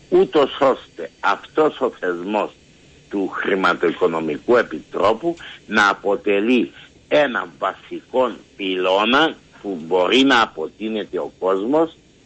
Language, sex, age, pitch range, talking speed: Greek, male, 60-79, 105-155 Hz, 95 wpm